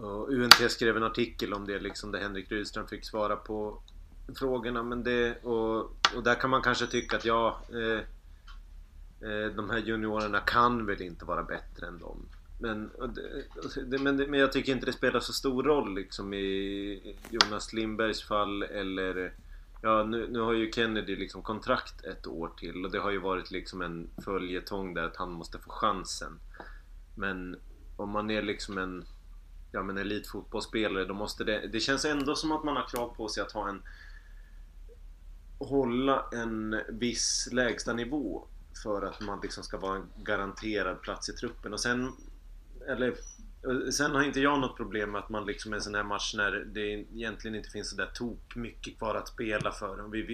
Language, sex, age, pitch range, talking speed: Swedish, male, 30-49, 95-120 Hz, 185 wpm